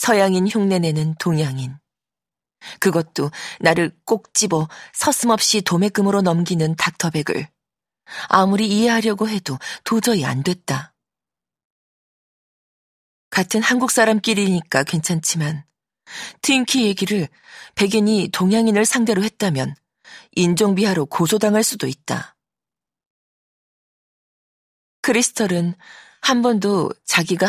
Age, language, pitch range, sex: 40-59, Korean, 165-215 Hz, female